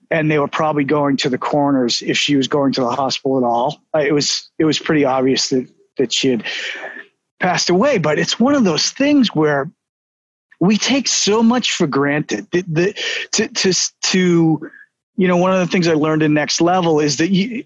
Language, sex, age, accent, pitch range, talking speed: English, male, 40-59, American, 155-210 Hz, 205 wpm